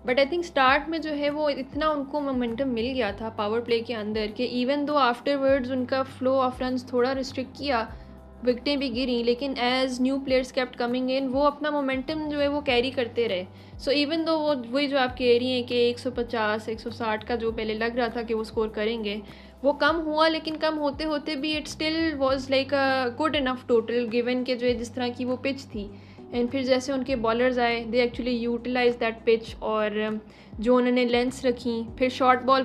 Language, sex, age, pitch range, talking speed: Urdu, female, 10-29, 230-265 Hz, 205 wpm